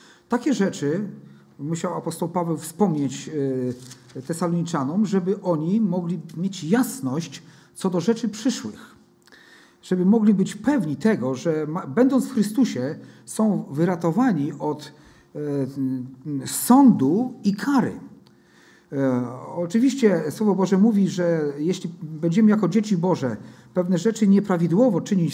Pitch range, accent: 165-220 Hz, native